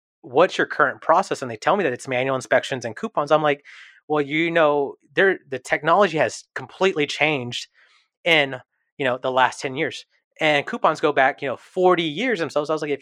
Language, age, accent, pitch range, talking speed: English, 30-49, American, 125-155 Hz, 210 wpm